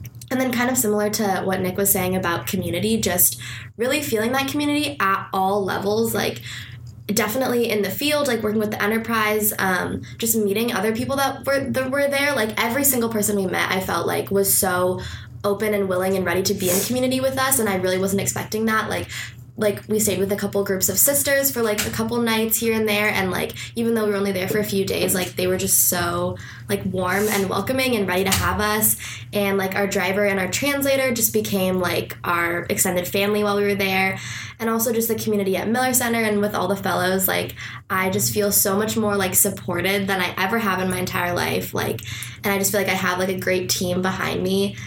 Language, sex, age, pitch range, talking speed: English, female, 20-39, 185-225 Hz, 230 wpm